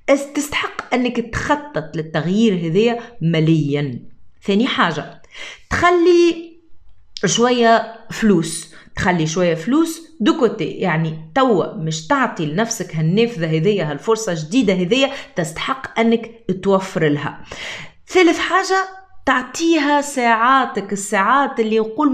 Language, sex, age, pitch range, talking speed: French, female, 30-49, 170-270 Hz, 95 wpm